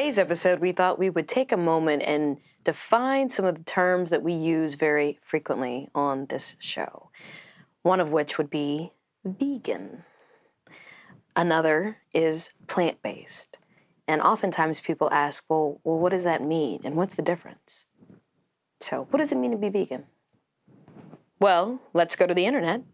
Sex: female